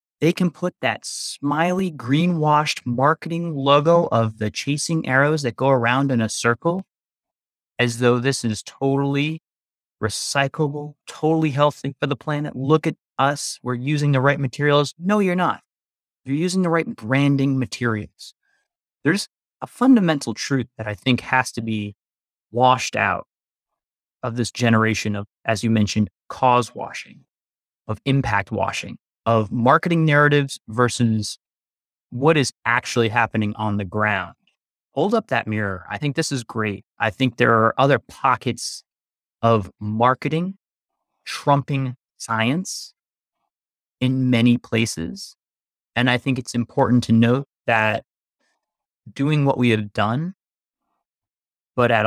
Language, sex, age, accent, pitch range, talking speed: English, male, 30-49, American, 110-145 Hz, 135 wpm